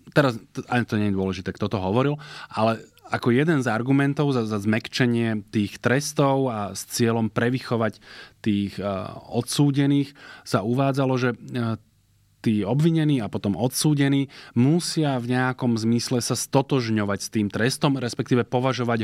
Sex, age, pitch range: male, 20-39, 105-130 Hz